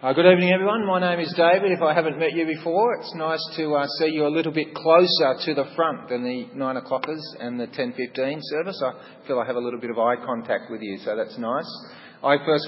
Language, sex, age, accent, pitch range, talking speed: English, male, 40-59, Australian, 120-155 Hz, 245 wpm